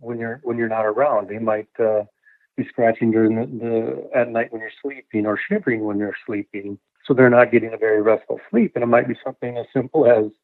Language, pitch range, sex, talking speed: English, 110-130 Hz, male, 230 wpm